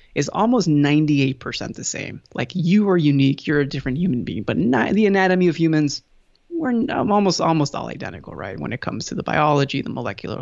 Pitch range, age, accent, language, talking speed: 130-170 Hz, 20-39, American, English, 190 wpm